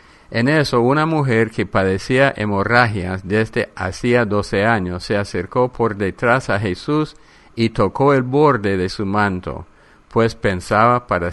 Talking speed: 145 wpm